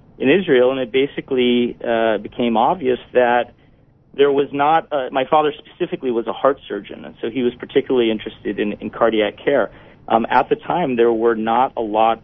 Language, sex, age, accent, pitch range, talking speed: English, male, 40-59, American, 110-130 Hz, 190 wpm